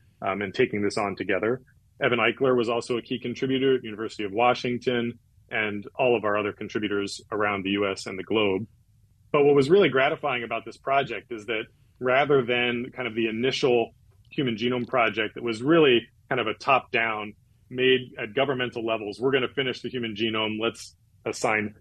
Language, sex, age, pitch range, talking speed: English, male, 30-49, 105-125 Hz, 190 wpm